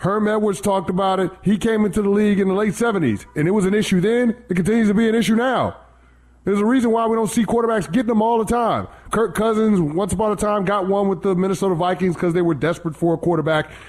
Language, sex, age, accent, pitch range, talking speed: English, male, 30-49, American, 145-210 Hz, 255 wpm